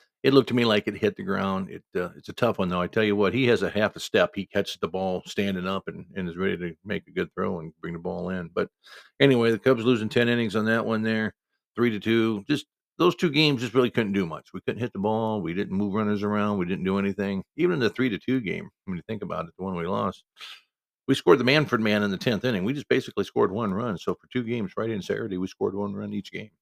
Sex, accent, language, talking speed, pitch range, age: male, American, English, 280 wpm, 100-130 Hz, 50-69